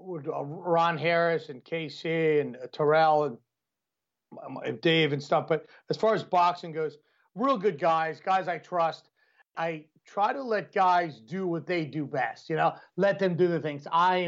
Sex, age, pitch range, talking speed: male, 40-59, 155-180 Hz, 170 wpm